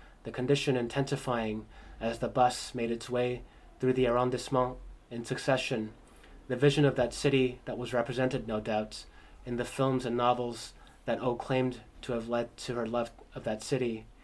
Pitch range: 115-130 Hz